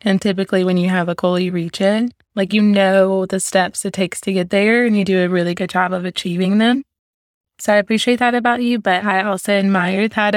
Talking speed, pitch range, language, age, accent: 235 wpm, 190-220 Hz, English, 20-39, American